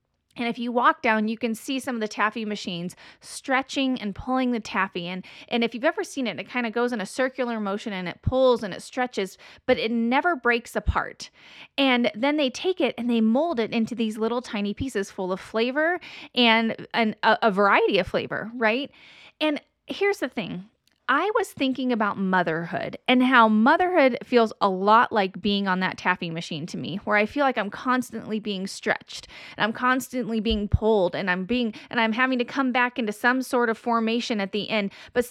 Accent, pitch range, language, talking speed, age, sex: American, 210-260 Hz, English, 205 wpm, 30-49, female